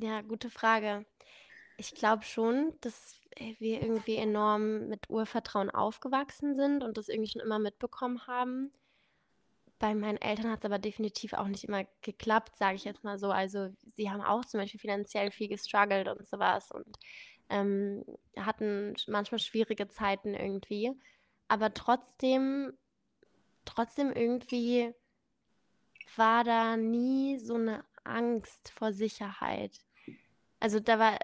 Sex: female